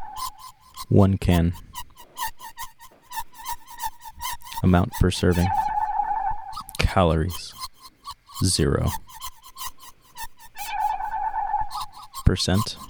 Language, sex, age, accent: English, male, 30-49, American